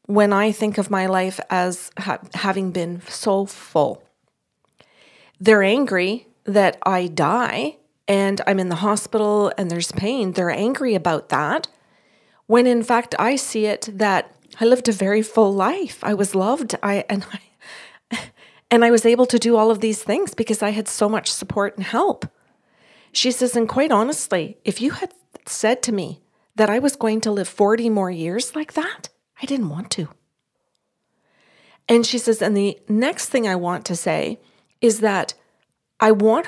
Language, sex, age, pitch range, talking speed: English, female, 40-59, 195-235 Hz, 170 wpm